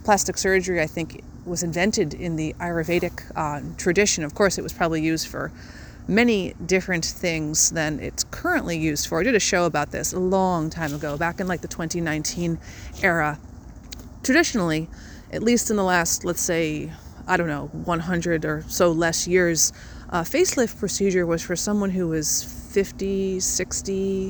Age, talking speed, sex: 30-49, 170 wpm, female